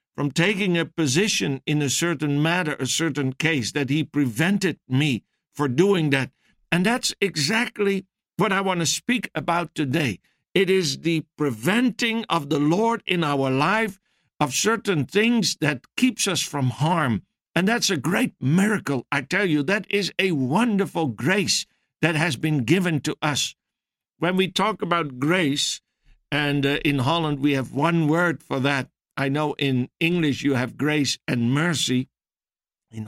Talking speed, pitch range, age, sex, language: 160 wpm, 135-170 Hz, 60-79, male, English